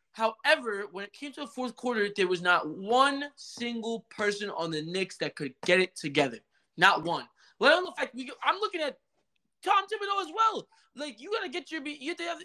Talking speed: 200 wpm